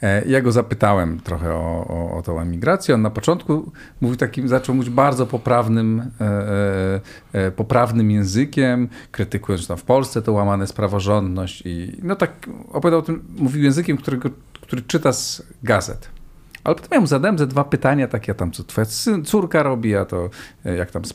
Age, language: 40-59, Polish